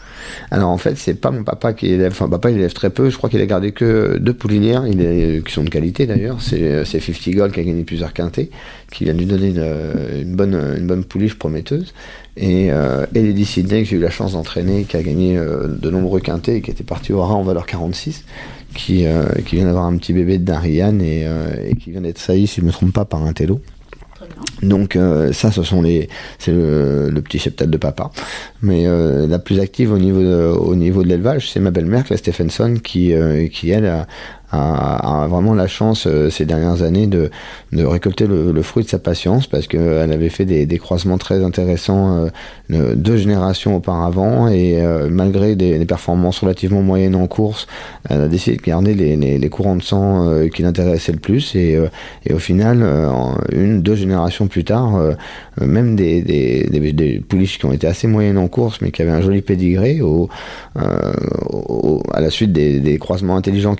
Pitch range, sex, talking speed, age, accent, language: 80-100 Hz, male, 220 wpm, 40-59, French, French